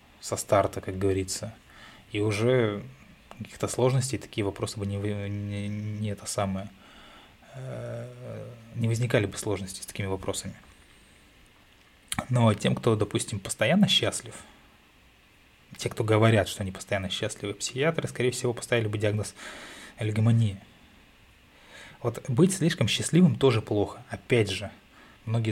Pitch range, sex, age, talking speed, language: 100-120 Hz, male, 20-39, 120 wpm, Russian